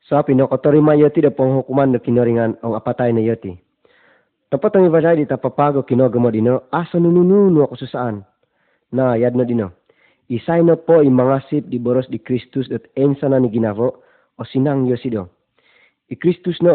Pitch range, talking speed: 120-145 Hz, 170 wpm